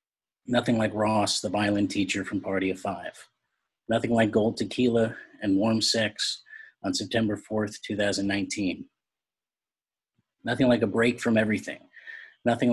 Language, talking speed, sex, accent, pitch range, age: English, 130 wpm, male, American, 105-120 Hz, 30-49